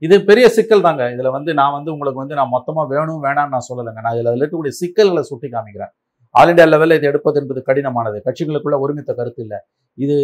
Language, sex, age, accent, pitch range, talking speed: Tamil, male, 50-69, native, 145-185 Hz, 205 wpm